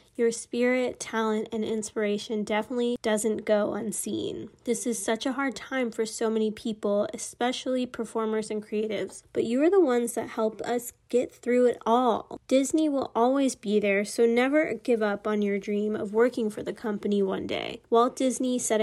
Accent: American